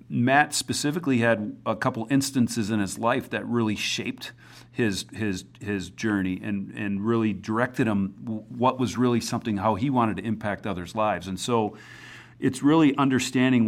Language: English